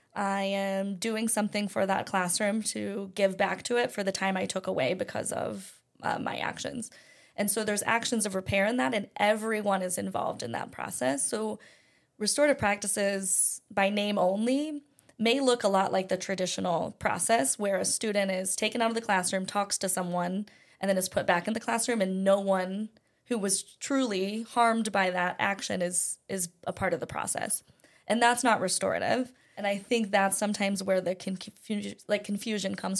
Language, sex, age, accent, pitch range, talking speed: English, female, 20-39, American, 190-225 Hz, 190 wpm